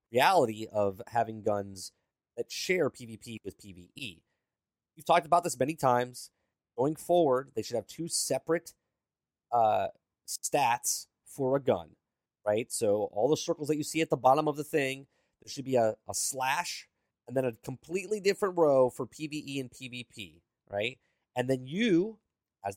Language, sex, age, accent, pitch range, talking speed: English, male, 30-49, American, 120-175 Hz, 165 wpm